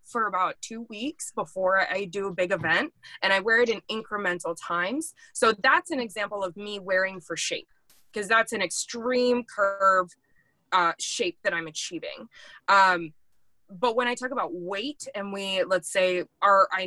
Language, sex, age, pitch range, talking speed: English, female, 20-39, 180-245 Hz, 170 wpm